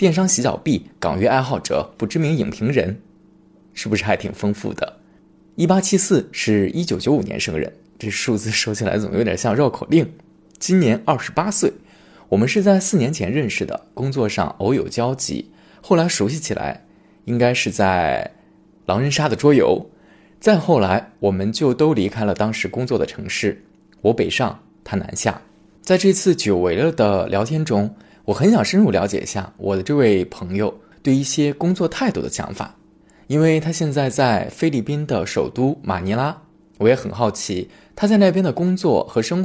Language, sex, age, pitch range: Chinese, male, 20-39, 110-175 Hz